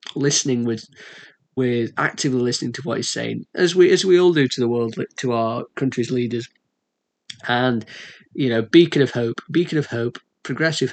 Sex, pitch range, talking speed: male, 120-140 Hz, 175 wpm